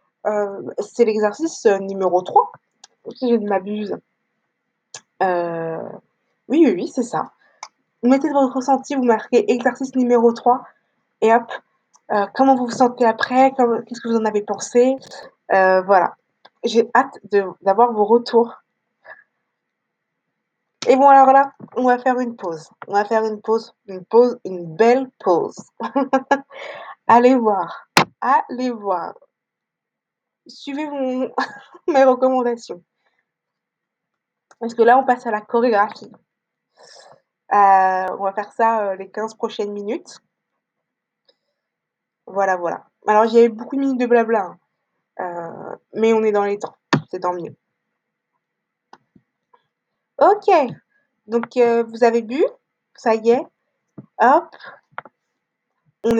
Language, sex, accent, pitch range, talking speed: French, female, French, 210-260 Hz, 130 wpm